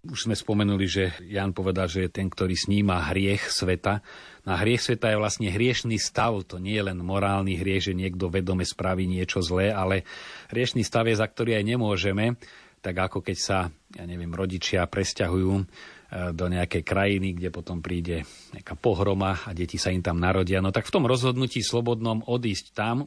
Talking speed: 185 wpm